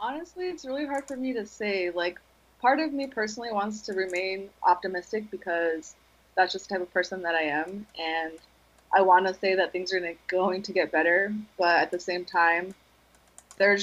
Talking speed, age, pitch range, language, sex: 195 wpm, 20-39, 165-205 Hz, English, female